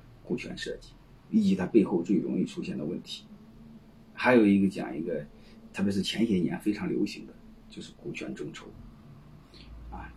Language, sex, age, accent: Chinese, male, 30-49, native